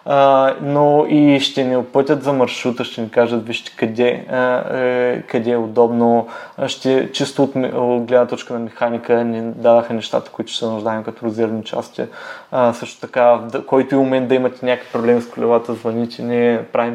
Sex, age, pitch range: male, 20-39, 115-145 Hz